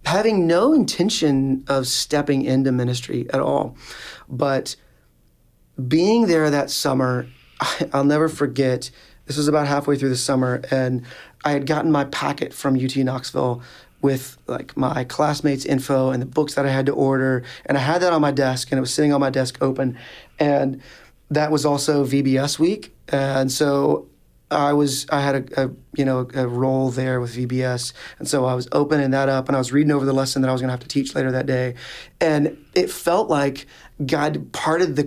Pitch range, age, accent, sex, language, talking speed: 130-150 Hz, 30-49, American, male, English, 195 wpm